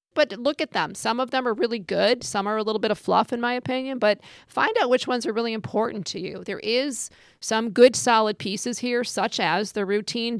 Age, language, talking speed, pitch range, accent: 40-59, English, 235 wpm, 190-225 Hz, American